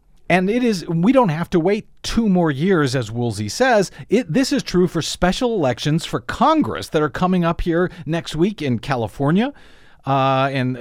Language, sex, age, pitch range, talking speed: English, male, 50-69, 120-165 Hz, 190 wpm